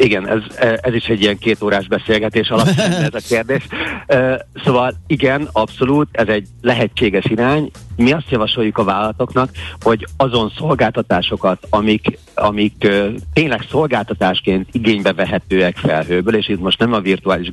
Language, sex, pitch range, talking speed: Hungarian, male, 95-120 Hz, 135 wpm